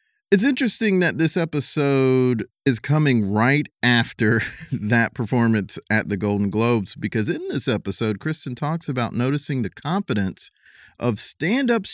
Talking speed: 135 wpm